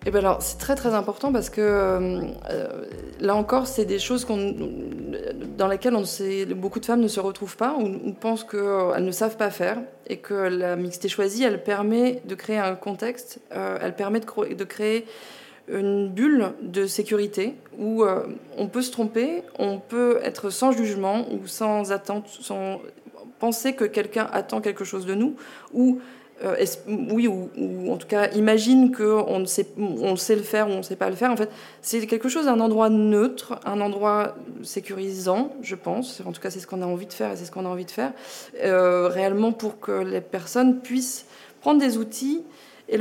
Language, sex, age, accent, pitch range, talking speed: French, female, 20-39, French, 195-240 Hz, 200 wpm